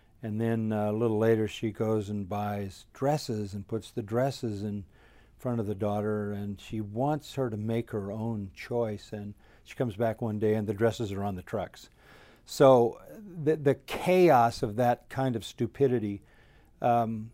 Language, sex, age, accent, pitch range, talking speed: English, male, 50-69, American, 110-135 Hz, 175 wpm